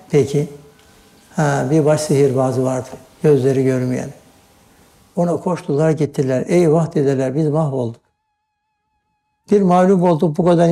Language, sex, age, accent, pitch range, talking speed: Turkish, male, 60-79, native, 135-170 Hz, 110 wpm